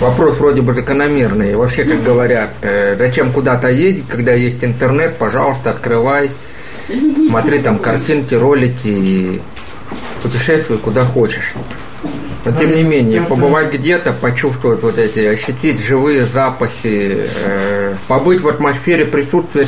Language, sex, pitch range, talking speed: Russian, male, 115-140 Hz, 125 wpm